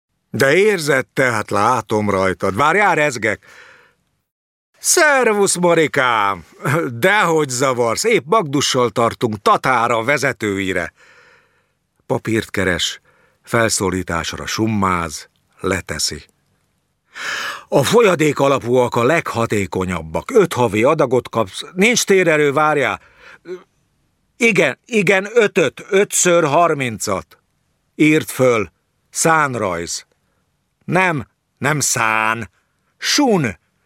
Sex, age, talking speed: male, 60-79, 80 wpm